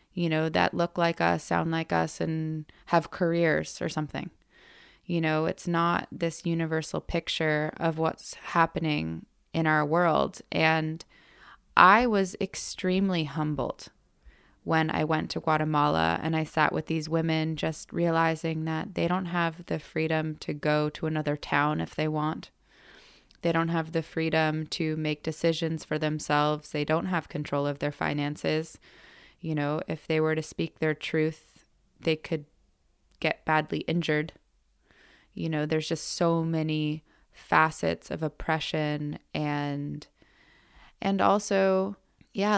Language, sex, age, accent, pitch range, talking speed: English, female, 20-39, American, 150-170 Hz, 145 wpm